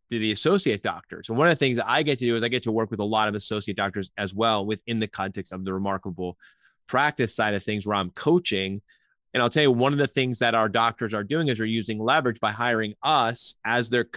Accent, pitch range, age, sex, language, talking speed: American, 110-130 Hz, 30-49, male, English, 265 wpm